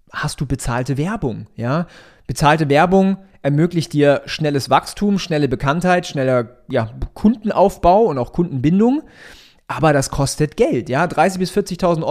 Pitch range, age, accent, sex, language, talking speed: 140-180 Hz, 30-49, German, male, German, 135 wpm